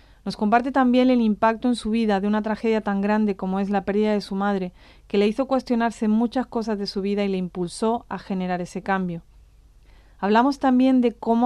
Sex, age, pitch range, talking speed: female, 40-59, 195-240 Hz, 210 wpm